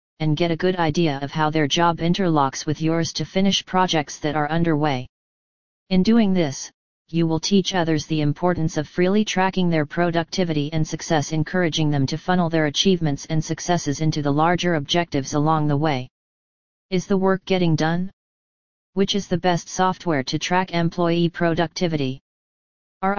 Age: 40-59